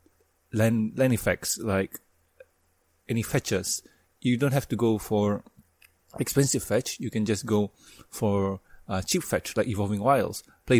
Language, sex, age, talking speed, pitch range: English, male, 30-49, 140 wpm, 105-135 Hz